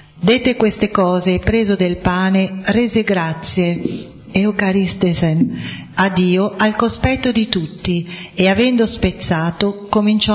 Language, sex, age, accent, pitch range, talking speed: Italian, female, 40-59, native, 170-215 Hz, 115 wpm